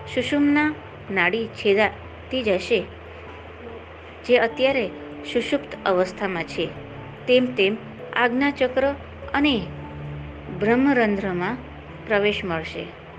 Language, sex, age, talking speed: Gujarati, female, 20-39, 45 wpm